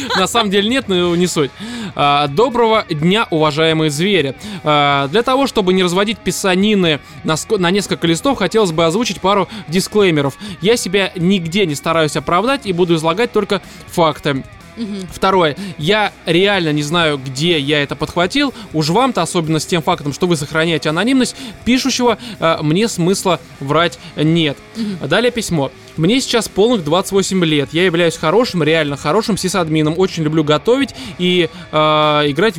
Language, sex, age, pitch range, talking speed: Russian, male, 20-39, 160-210 Hz, 145 wpm